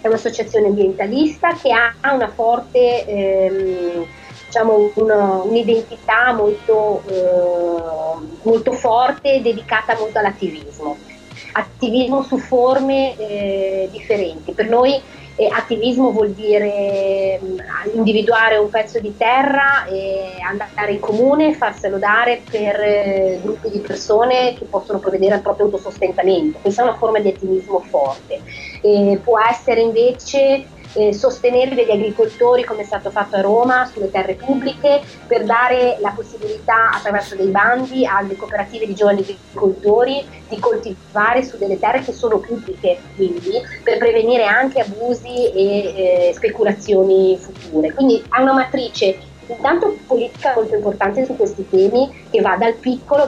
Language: Italian